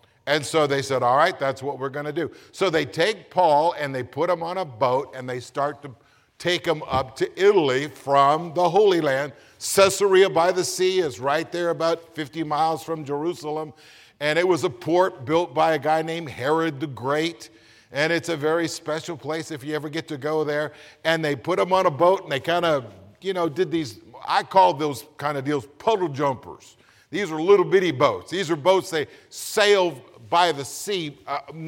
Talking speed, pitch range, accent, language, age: 210 wpm, 140-175 Hz, American, English, 50-69